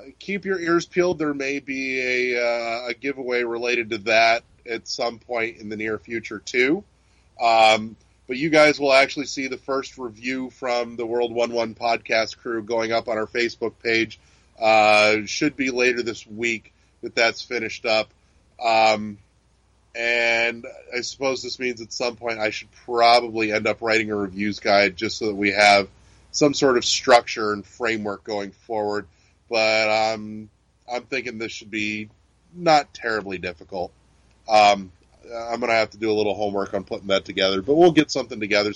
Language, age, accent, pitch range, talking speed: English, 30-49, American, 105-125 Hz, 175 wpm